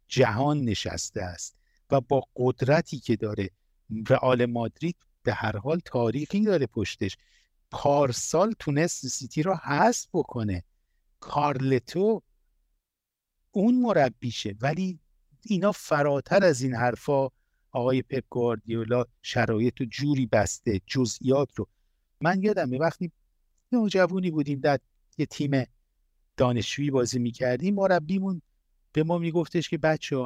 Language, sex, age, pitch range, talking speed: Persian, male, 60-79, 120-160 Hz, 110 wpm